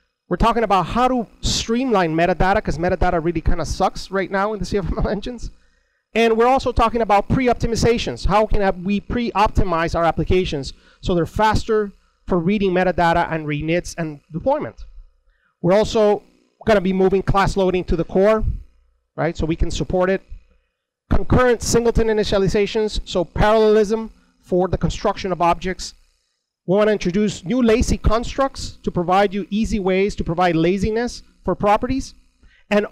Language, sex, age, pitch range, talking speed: English, male, 30-49, 170-215 Hz, 155 wpm